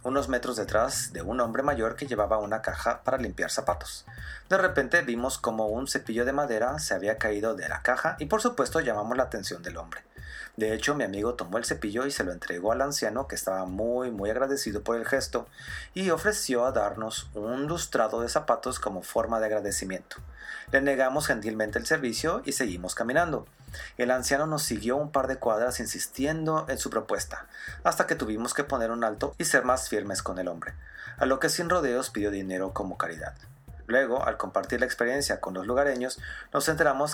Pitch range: 110-145 Hz